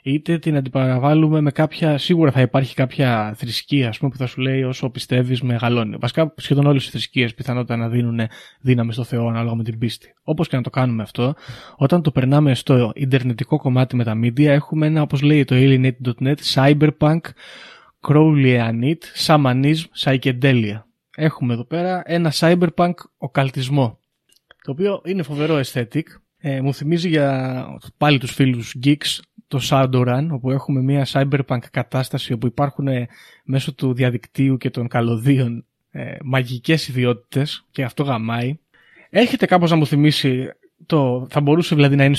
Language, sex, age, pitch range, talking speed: Greek, male, 20-39, 125-155 Hz, 160 wpm